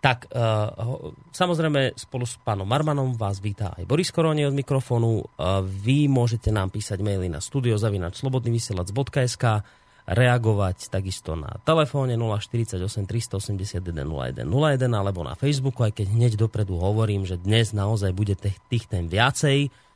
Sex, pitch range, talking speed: male, 100-130 Hz, 125 wpm